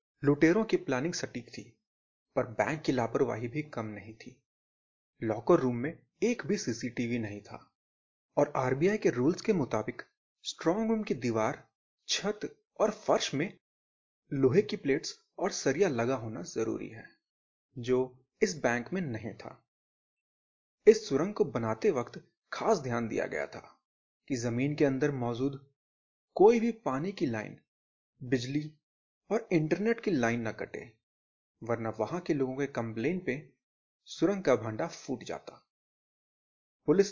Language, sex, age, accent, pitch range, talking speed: Hindi, male, 30-49, native, 115-175 Hz, 145 wpm